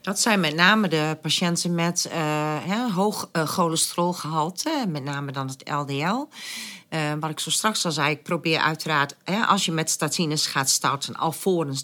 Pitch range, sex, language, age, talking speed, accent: 150-200 Hz, female, Dutch, 40-59, 165 wpm, Dutch